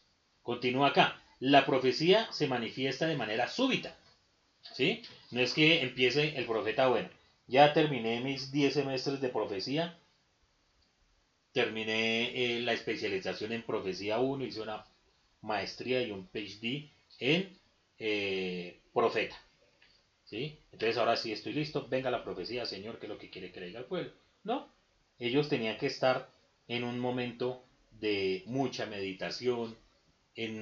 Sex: male